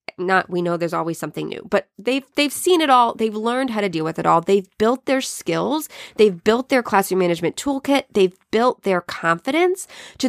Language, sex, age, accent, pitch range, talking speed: English, female, 20-39, American, 180-240 Hz, 210 wpm